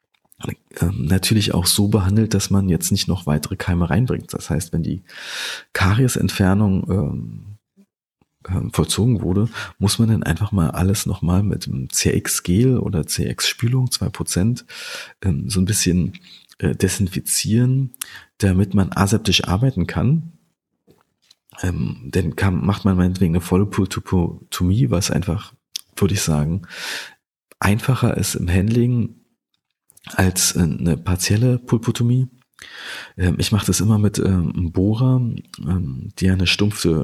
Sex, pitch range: male, 90-115 Hz